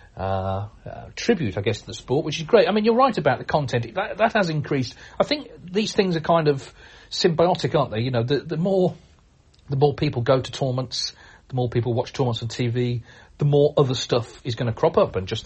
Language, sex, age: English, male, 40-59